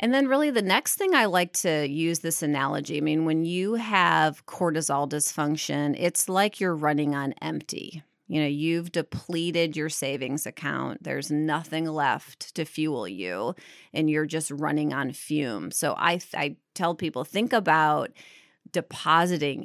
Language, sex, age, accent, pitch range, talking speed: English, female, 30-49, American, 150-175 Hz, 160 wpm